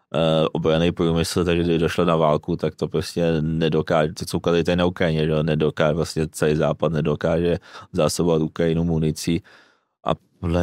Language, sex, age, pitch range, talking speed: Czech, male, 20-39, 85-90 Hz, 135 wpm